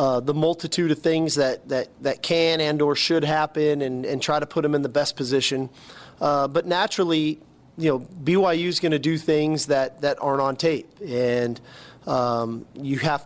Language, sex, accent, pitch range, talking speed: English, male, American, 140-165 Hz, 195 wpm